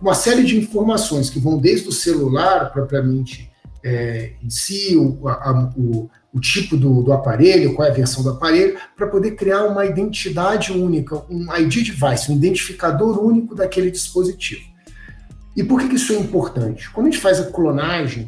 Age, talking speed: 50-69, 165 wpm